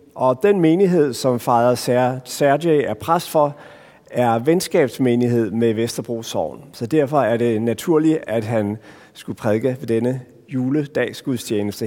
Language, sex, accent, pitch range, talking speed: Danish, male, native, 115-140 Hz, 125 wpm